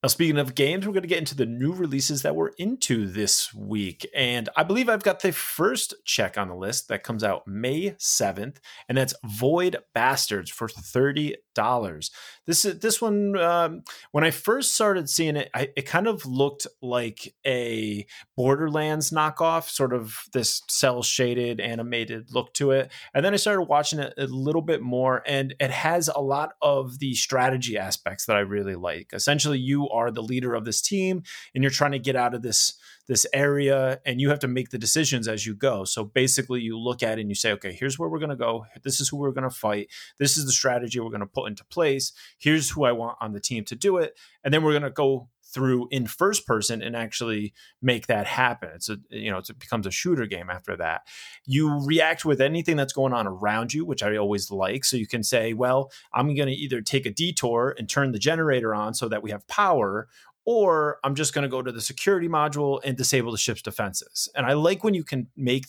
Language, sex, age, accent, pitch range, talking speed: English, male, 30-49, American, 115-150 Hz, 225 wpm